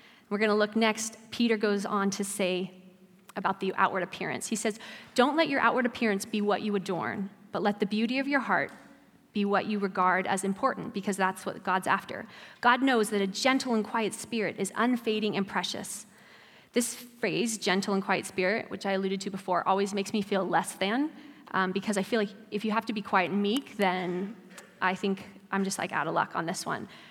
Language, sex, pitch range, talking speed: English, female, 195-230 Hz, 210 wpm